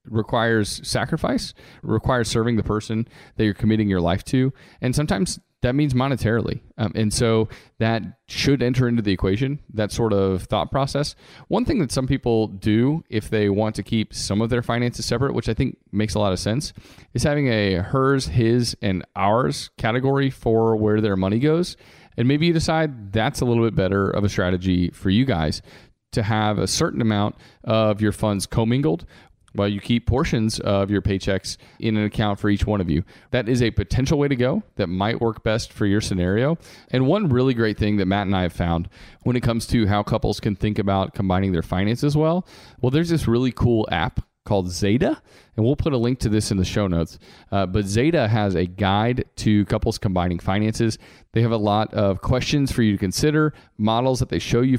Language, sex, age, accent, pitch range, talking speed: English, male, 30-49, American, 100-125 Hz, 205 wpm